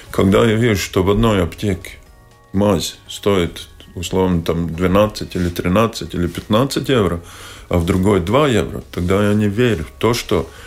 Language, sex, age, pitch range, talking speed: Russian, male, 20-39, 90-105 Hz, 165 wpm